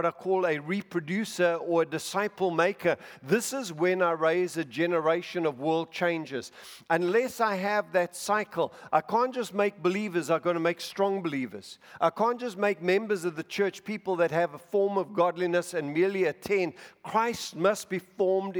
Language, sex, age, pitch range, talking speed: English, male, 50-69, 160-190 Hz, 185 wpm